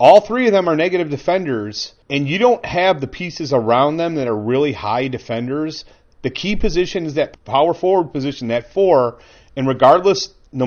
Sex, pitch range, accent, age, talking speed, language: male, 135-190 Hz, American, 40-59, 185 wpm, English